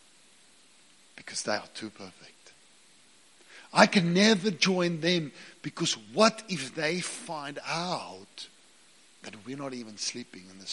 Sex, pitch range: male, 110-160 Hz